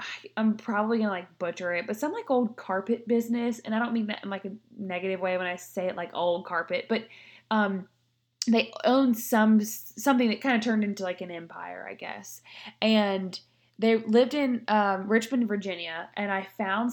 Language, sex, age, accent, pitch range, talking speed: English, female, 20-39, American, 190-225 Hz, 195 wpm